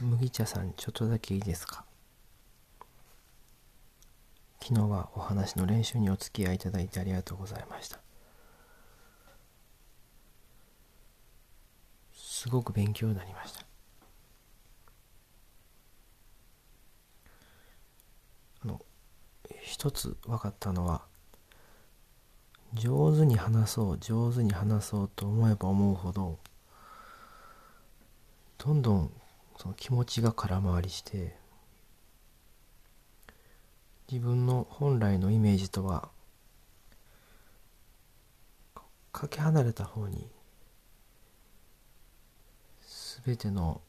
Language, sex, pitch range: Japanese, male, 95-115 Hz